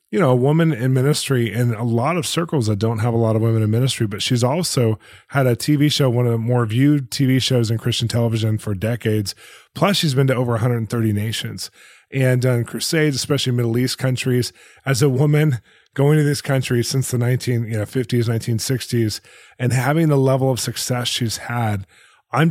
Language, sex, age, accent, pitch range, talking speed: English, male, 20-39, American, 120-135 Hz, 200 wpm